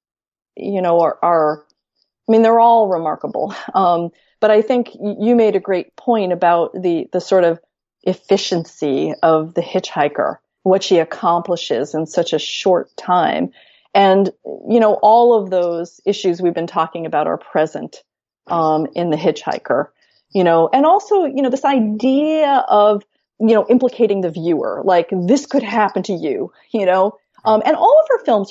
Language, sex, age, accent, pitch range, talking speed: English, female, 40-59, American, 170-235 Hz, 170 wpm